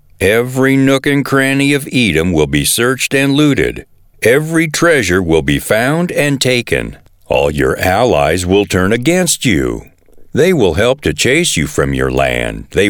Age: 60-79